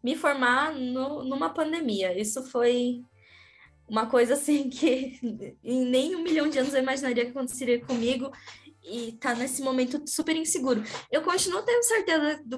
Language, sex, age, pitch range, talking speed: Portuguese, female, 10-29, 215-260 Hz, 155 wpm